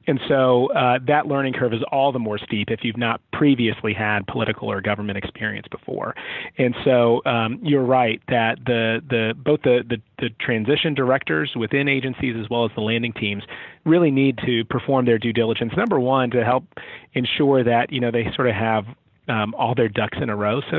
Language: English